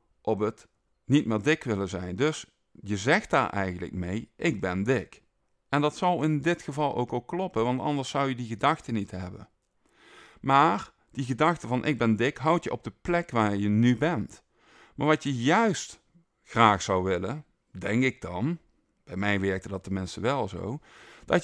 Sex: male